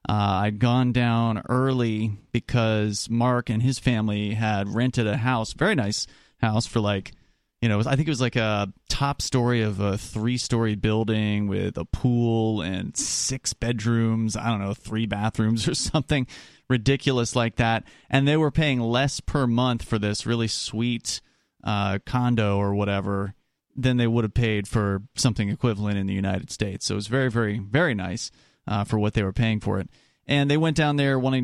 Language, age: English, 30-49